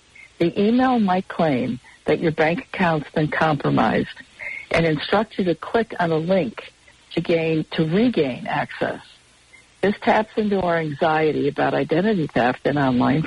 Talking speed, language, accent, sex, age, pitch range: 145 wpm, English, American, female, 60-79, 150-195 Hz